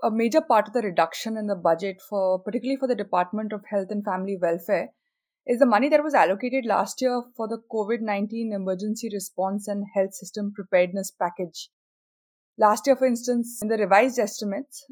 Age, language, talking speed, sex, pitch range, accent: 20-39, English, 180 wpm, female, 200-245 Hz, Indian